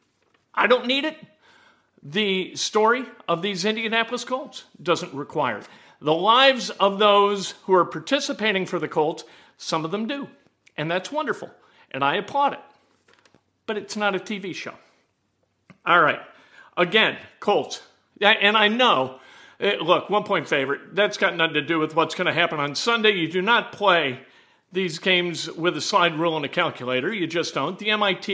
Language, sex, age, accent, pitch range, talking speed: English, male, 50-69, American, 165-215 Hz, 170 wpm